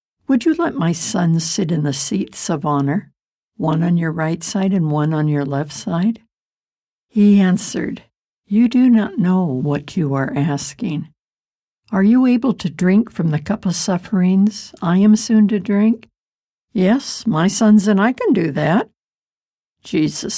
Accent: American